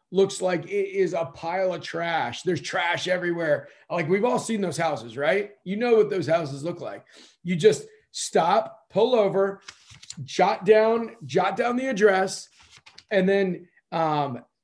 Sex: male